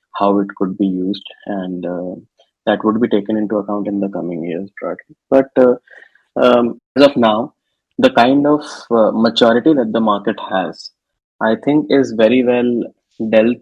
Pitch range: 100-120 Hz